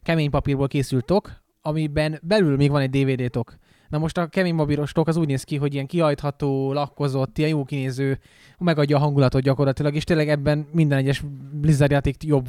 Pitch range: 140-160 Hz